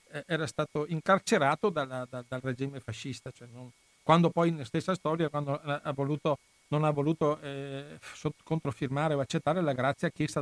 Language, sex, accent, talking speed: Italian, male, native, 150 wpm